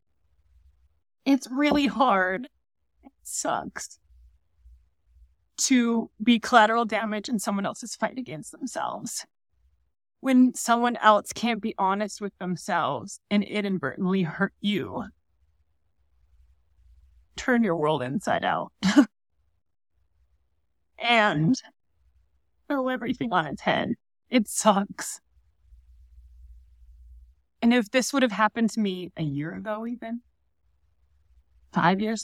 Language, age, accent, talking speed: English, 30-49, American, 100 wpm